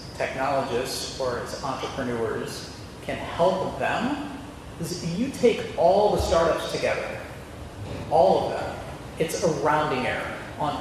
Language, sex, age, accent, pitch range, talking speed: English, male, 40-59, American, 135-170 Hz, 120 wpm